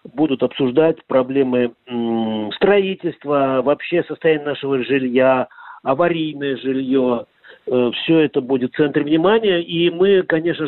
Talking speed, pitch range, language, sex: 105 wpm, 130-160 Hz, Russian, male